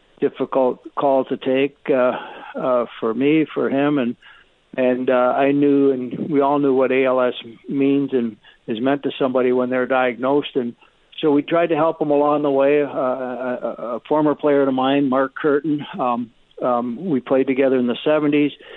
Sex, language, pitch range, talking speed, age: male, English, 125-145 Hz, 180 wpm, 60-79